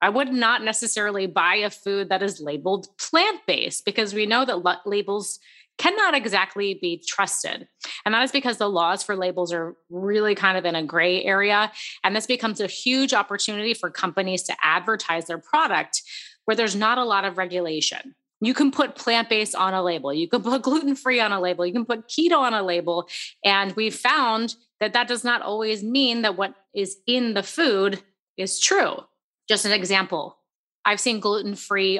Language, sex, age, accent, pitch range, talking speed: English, female, 30-49, American, 190-240 Hz, 185 wpm